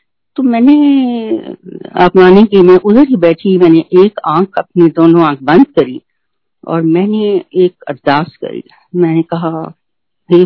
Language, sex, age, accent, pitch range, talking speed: Hindi, female, 50-69, native, 175-275 Hz, 140 wpm